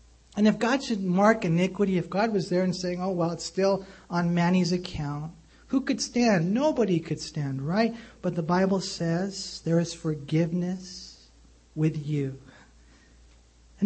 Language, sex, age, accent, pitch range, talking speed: English, male, 50-69, American, 145-190 Hz, 155 wpm